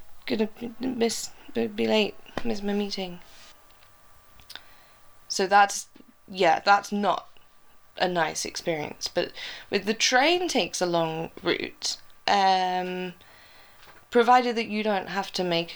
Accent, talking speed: British, 120 wpm